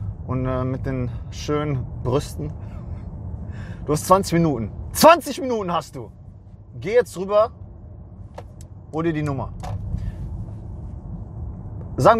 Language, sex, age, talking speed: English, male, 30-49, 105 wpm